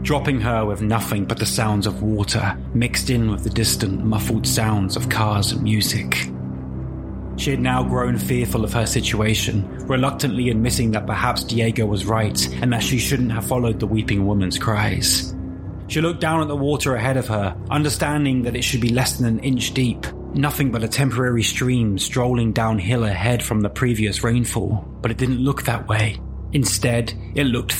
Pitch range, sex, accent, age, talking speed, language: 105-130 Hz, male, British, 20-39, 185 wpm, English